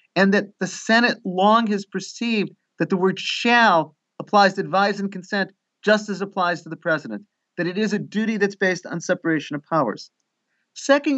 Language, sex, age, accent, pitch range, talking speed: English, male, 50-69, American, 170-215 Hz, 185 wpm